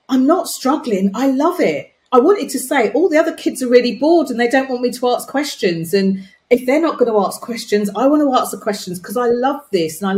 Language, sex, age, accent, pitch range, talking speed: English, female, 40-59, British, 160-230 Hz, 255 wpm